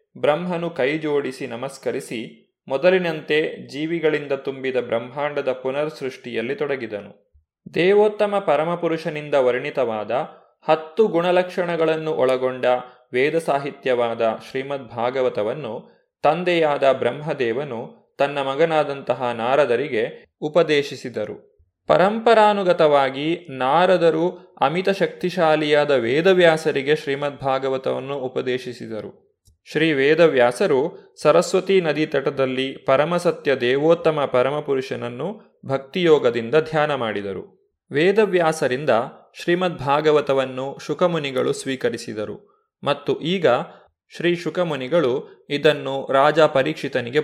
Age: 20-39